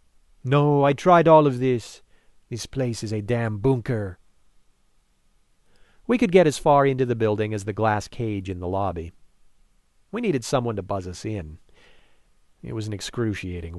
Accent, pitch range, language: American, 100-130 Hz, English